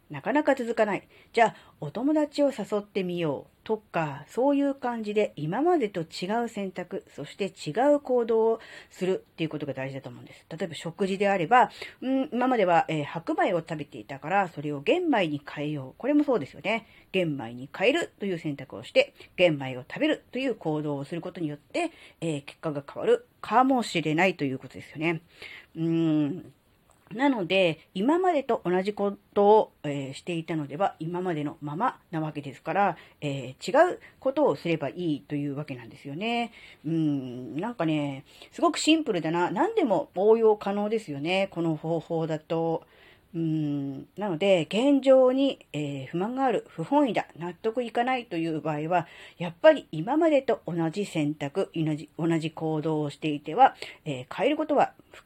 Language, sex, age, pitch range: Japanese, female, 40-59, 155-235 Hz